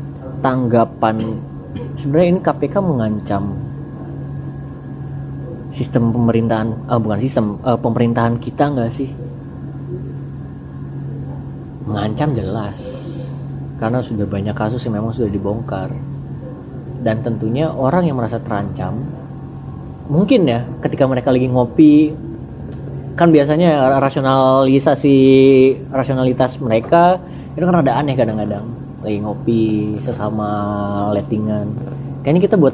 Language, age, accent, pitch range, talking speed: Indonesian, 20-39, native, 110-140 Hz, 95 wpm